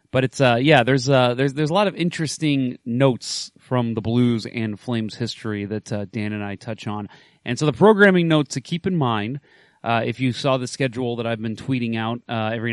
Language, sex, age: English, male, 30-49